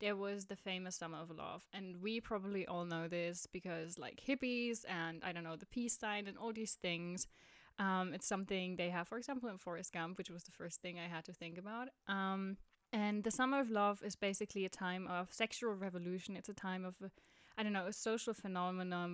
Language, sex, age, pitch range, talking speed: English, female, 10-29, 185-215 Hz, 220 wpm